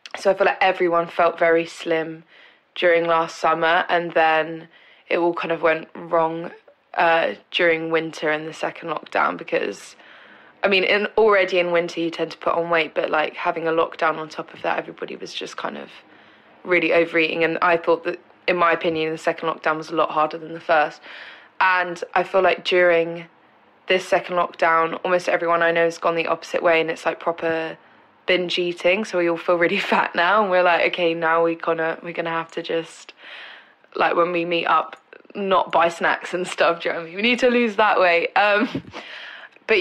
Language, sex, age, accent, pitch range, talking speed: English, female, 20-39, British, 165-180 Hz, 205 wpm